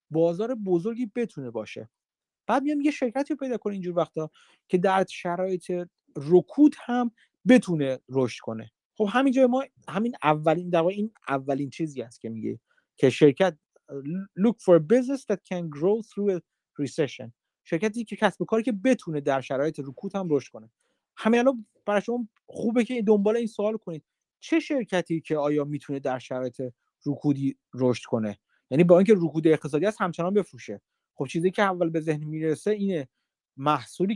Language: Persian